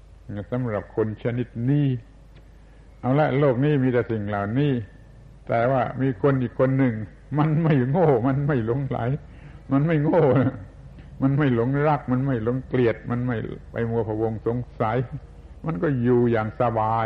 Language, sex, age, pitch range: Thai, male, 70-89, 105-135 Hz